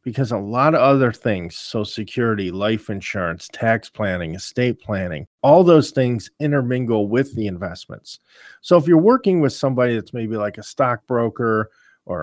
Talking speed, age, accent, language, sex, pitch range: 160 wpm, 40-59, American, English, male, 110-140 Hz